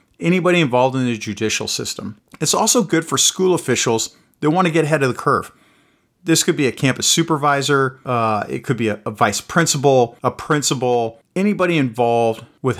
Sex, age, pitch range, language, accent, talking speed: male, 40-59, 115-150 Hz, English, American, 185 wpm